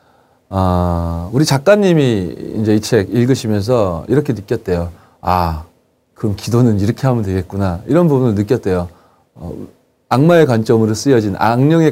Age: 30-49